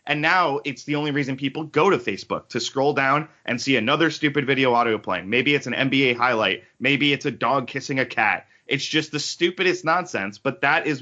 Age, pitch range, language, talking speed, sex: 30-49, 130-170 Hz, English, 210 wpm, male